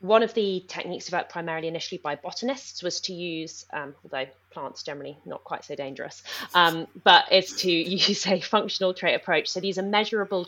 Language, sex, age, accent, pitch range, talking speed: English, female, 20-39, British, 155-195 Hz, 190 wpm